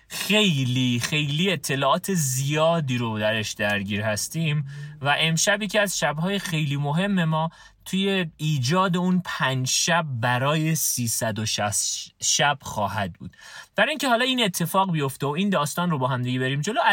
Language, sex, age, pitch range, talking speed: Persian, male, 30-49, 130-190 Hz, 160 wpm